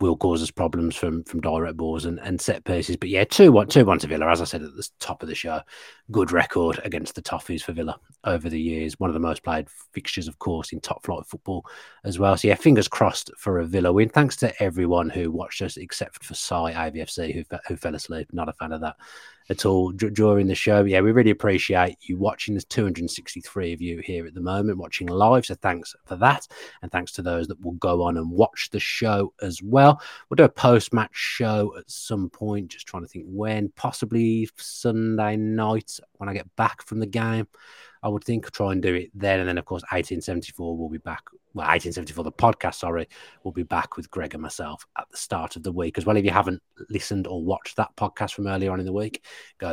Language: English